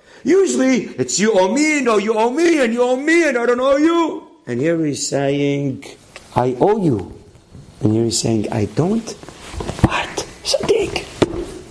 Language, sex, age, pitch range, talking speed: English, male, 30-49, 125-185 Hz, 175 wpm